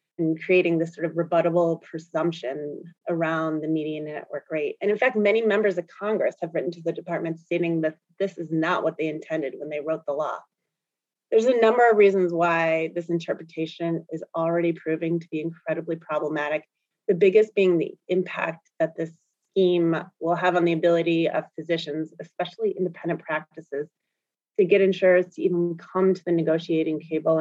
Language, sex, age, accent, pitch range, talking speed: English, female, 30-49, American, 165-200 Hz, 175 wpm